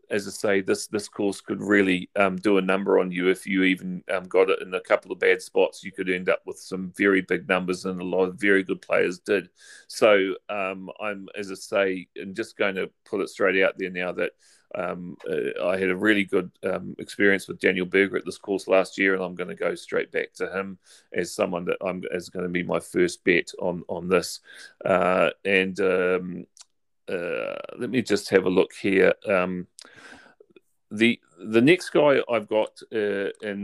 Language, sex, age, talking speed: English, male, 30-49, 210 wpm